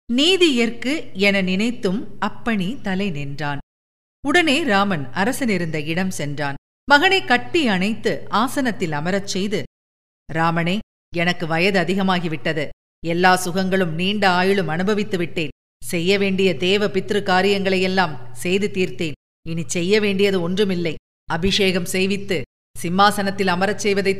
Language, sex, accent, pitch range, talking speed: Tamil, female, native, 175-195 Hz, 105 wpm